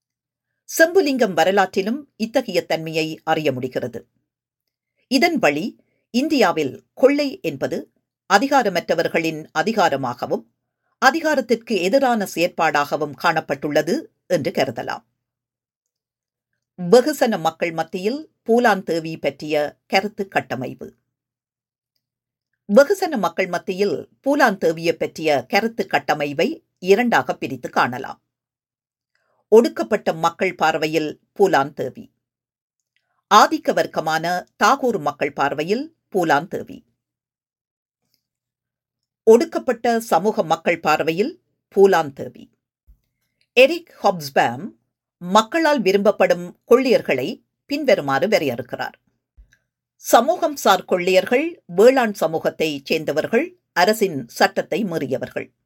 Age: 50-69